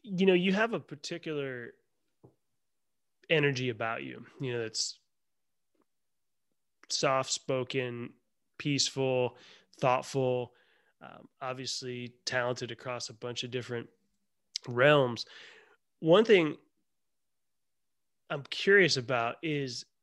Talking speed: 90 wpm